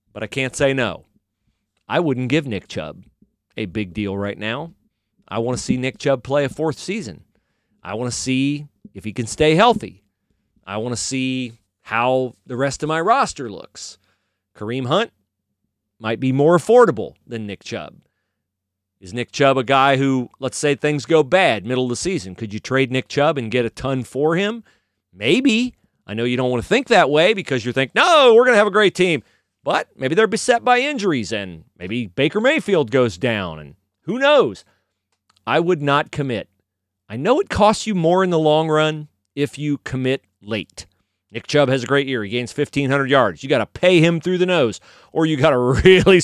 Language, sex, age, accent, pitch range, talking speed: English, male, 40-59, American, 110-165 Hz, 205 wpm